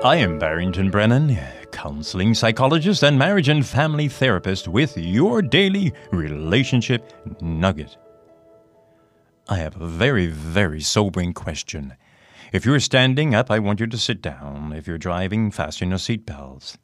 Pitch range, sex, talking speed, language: 85-120 Hz, male, 140 wpm, English